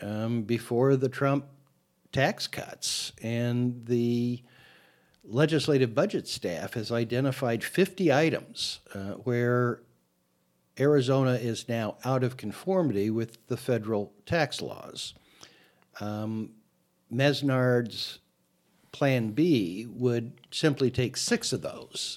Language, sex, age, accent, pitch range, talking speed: English, male, 60-79, American, 115-135 Hz, 105 wpm